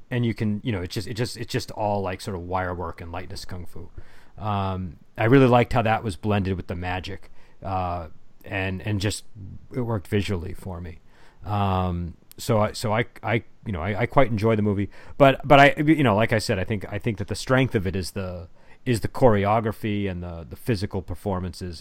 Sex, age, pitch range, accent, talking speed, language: male, 40-59, 95-115 Hz, American, 225 wpm, English